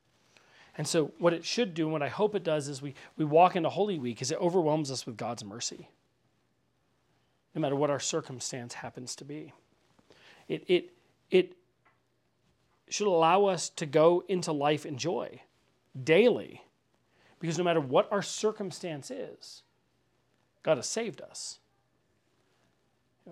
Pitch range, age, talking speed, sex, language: 130-180 Hz, 40-59, 150 wpm, male, English